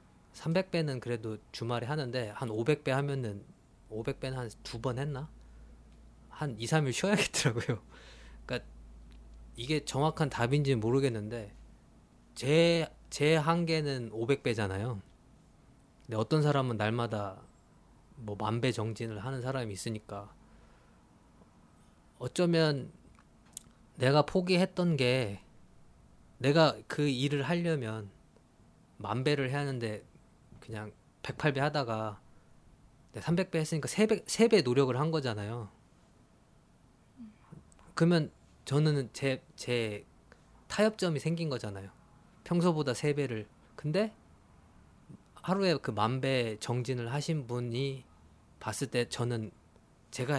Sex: male